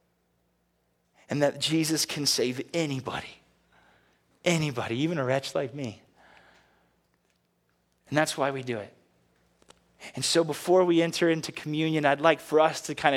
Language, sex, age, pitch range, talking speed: English, male, 30-49, 125-155 Hz, 140 wpm